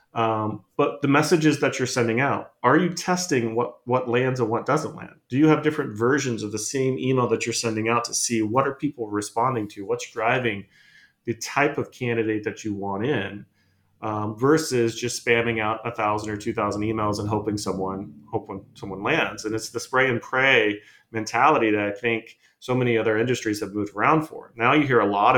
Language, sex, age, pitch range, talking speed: English, male, 30-49, 105-130 Hz, 210 wpm